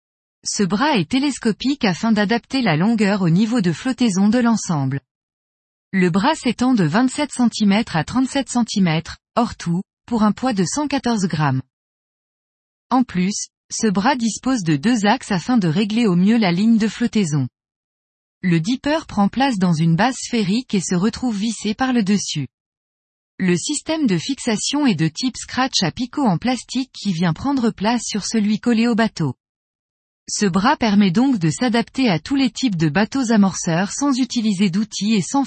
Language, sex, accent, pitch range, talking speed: French, female, French, 175-245 Hz, 175 wpm